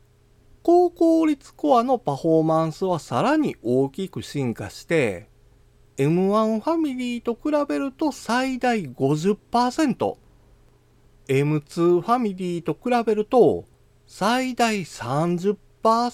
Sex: male